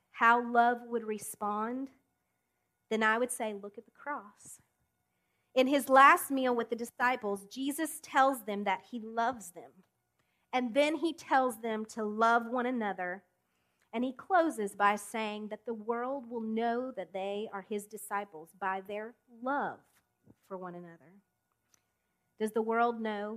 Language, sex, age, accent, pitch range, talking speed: English, female, 40-59, American, 185-235 Hz, 155 wpm